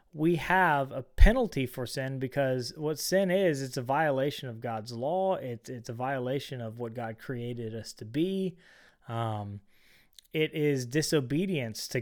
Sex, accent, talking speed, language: male, American, 155 wpm, English